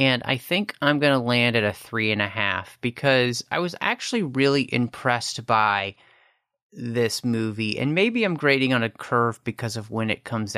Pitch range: 105-145 Hz